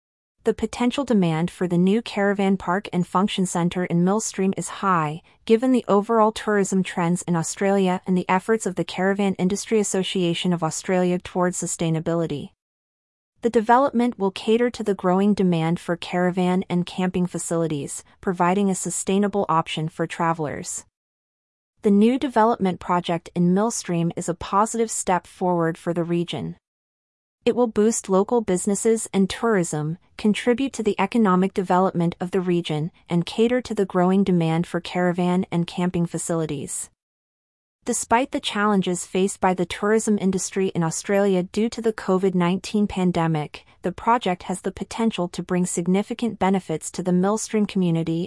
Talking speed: 150 wpm